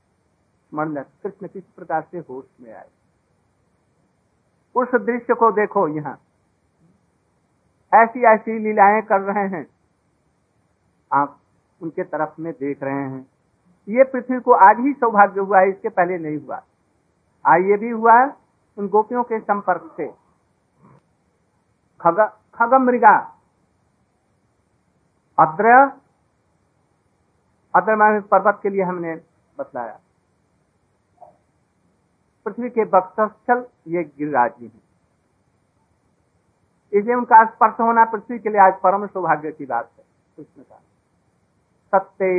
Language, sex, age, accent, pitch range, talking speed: Hindi, male, 50-69, native, 150-220 Hz, 115 wpm